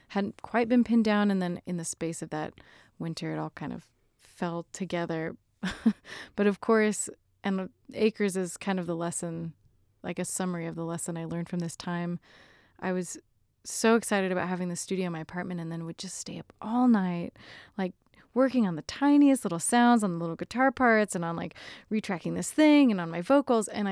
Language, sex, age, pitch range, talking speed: English, female, 20-39, 165-205 Hz, 205 wpm